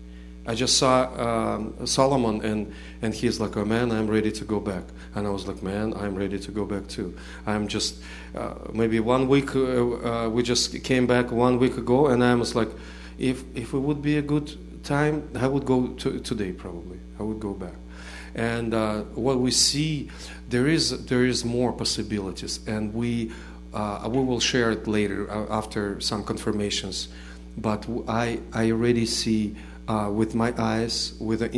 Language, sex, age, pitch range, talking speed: English, male, 40-59, 95-115 Hz, 185 wpm